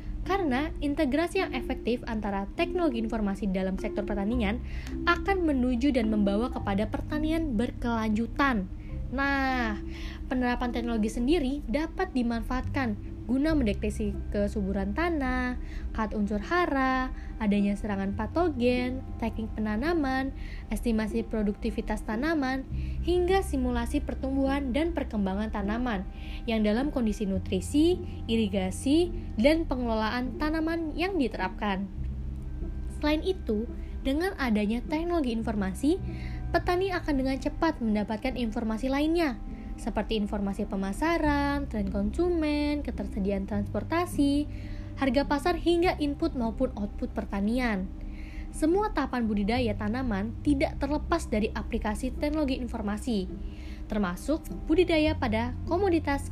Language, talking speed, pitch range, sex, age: Indonesian, 100 wpm, 210-295 Hz, female, 20-39